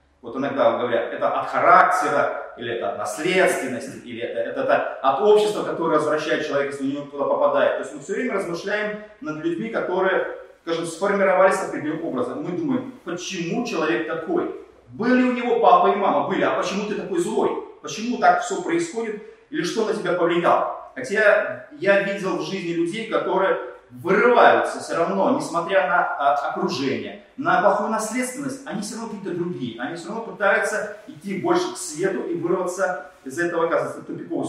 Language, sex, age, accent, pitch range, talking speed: Russian, male, 30-49, native, 170-265 Hz, 170 wpm